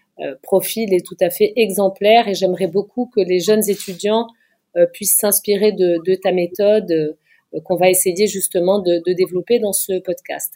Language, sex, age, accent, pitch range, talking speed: French, female, 30-49, French, 190-245 Hz, 165 wpm